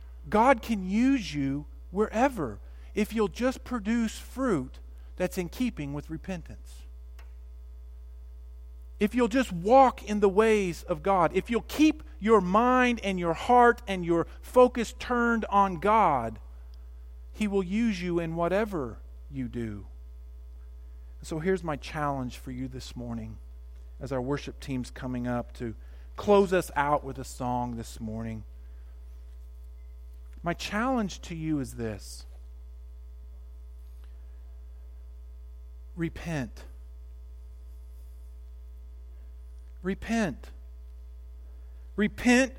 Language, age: English, 50-69